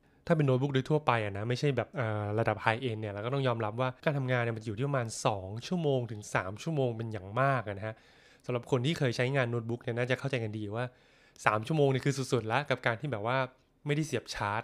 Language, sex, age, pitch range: Thai, male, 20-39, 115-135 Hz